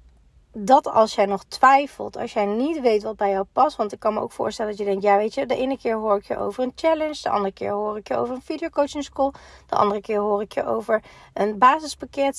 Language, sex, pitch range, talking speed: Dutch, female, 200-260 Hz, 260 wpm